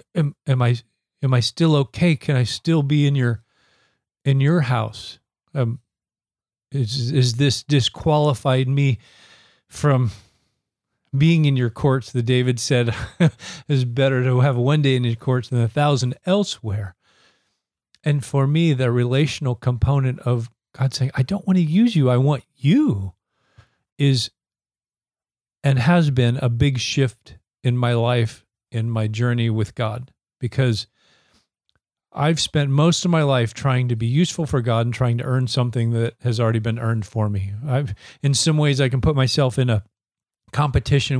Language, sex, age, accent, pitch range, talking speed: English, male, 40-59, American, 120-145 Hz, 160 wpm